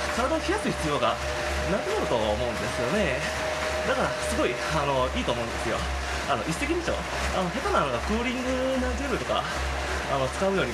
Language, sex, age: Japanese, male, 20-39